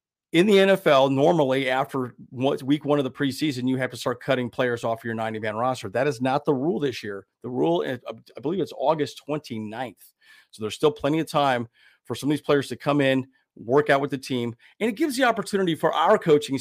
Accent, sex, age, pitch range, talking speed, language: American, male, 40-59, 115-145 Hz, 220 wpm, English